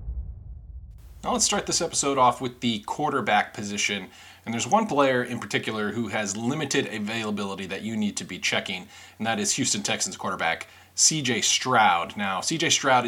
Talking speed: 170 wpm